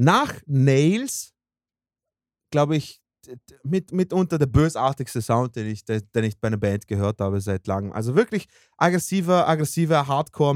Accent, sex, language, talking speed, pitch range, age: German, male, German, 140 wpm, 115-150 Hz, 30-49